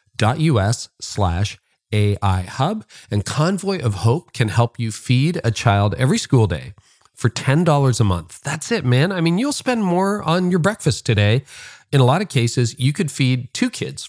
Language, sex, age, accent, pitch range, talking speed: English, male, 40-59, American, 105-140 Hz, 190 wpm